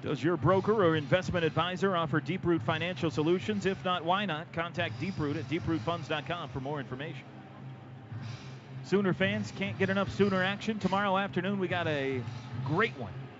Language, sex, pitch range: English, male, 130-180 Hz